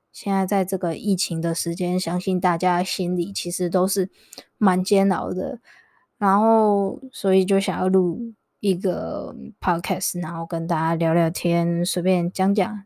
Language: Chinese